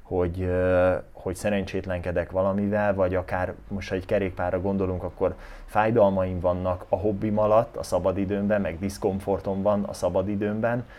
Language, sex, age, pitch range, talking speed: Hungarian, male, 20-39, 95-110 Hz, 130 wpm